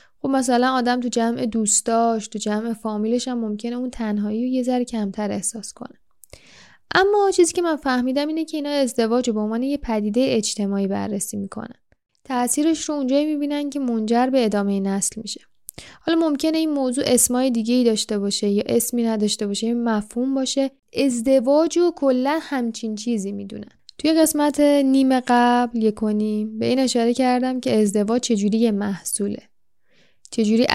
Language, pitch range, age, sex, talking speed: Persian, 210-265 Hz, 10-29, female, 155 wpm